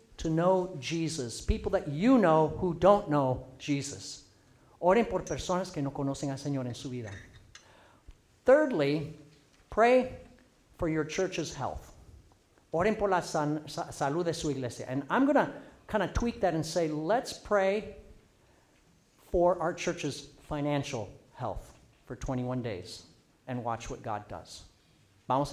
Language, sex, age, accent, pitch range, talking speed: English, male, 50-69, American, 135-205 Hz, 140 wpm